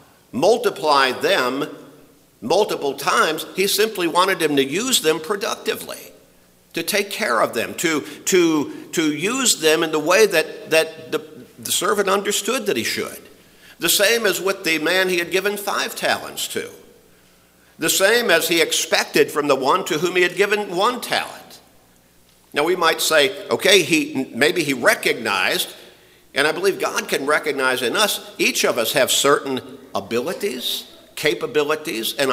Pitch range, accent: 155-215 Hz, American